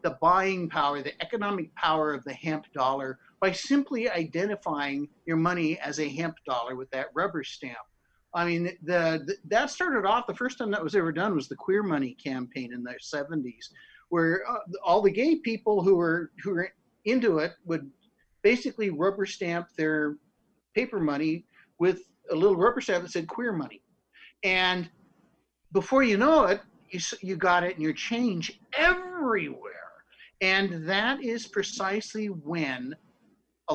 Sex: male